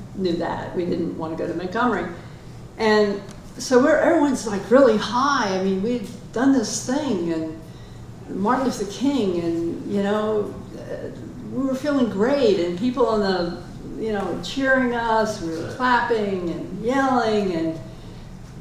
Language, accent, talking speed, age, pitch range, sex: English, American, 150 wpm, 60-79, 185-240 Hz, female